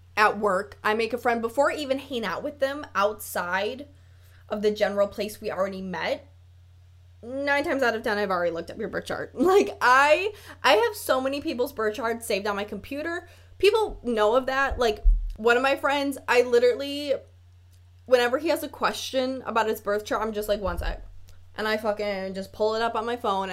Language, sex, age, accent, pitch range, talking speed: English, female, 20-39, American, 190-265 Hz, 205 wpm